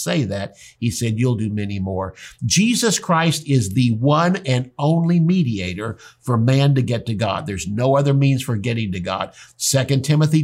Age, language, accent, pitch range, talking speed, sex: 60-79, English, American, 115-145 Hz, 185 wpm, male